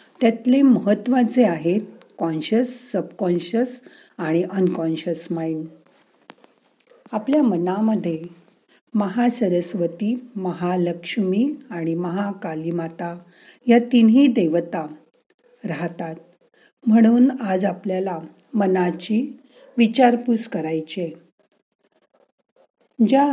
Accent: native